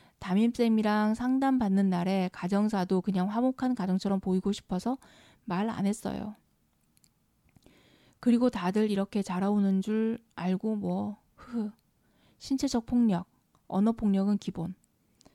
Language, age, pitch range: Korean, 20-39, 190-225 Hz